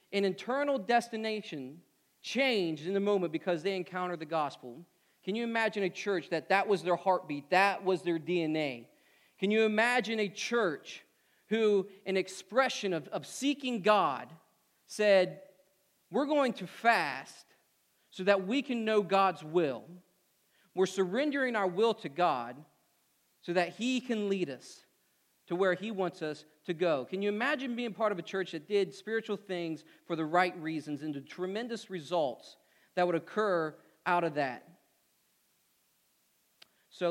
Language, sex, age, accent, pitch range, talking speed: English, male, 40-59, American, 170-220 Hz, 155 wpm